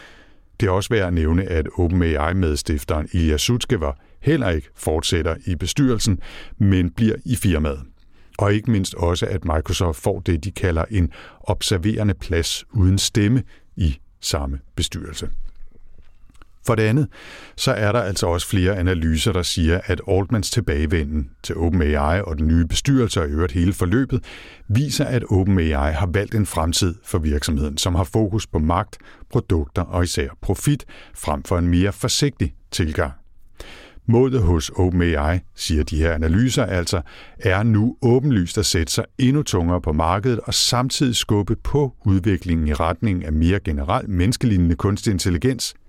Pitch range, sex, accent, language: 80-110 Hz, male, native, Danish